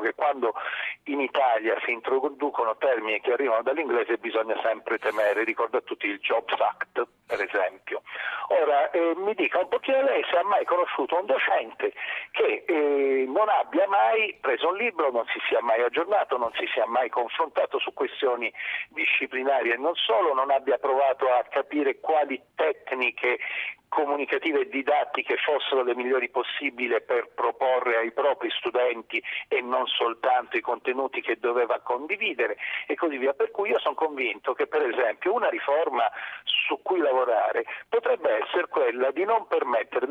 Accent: native